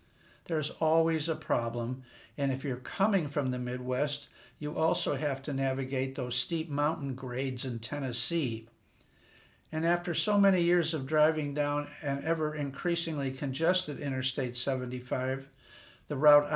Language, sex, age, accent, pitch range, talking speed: English, male, 60-79, American, 130-160 Hz, 135 wpm